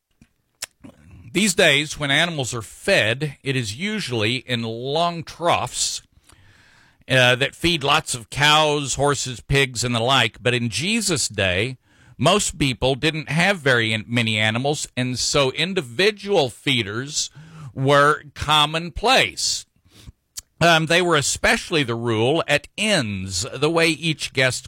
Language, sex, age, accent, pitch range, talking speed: English, male, 50-69, American, 120-160 Hz, 125 wpm